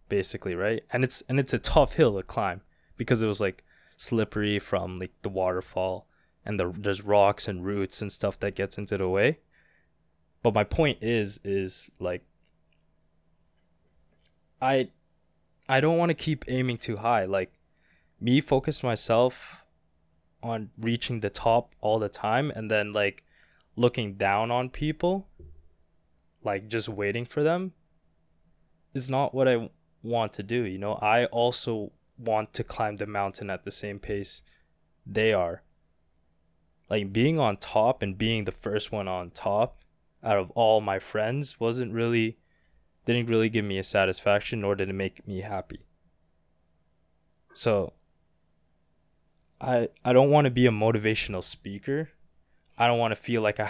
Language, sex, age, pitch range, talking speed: English, male, 20-39, 95-120 Hz, 155 wpm